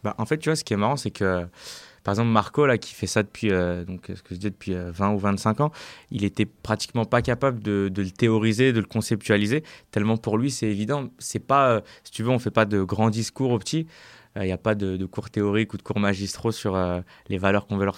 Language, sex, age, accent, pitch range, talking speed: French, male, 20-39, French, 100-120 Hz, 255 wpm